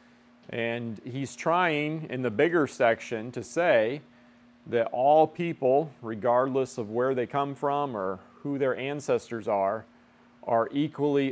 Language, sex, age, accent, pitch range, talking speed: English, male, 40-59, American, 115-140 Hz, 135 wpm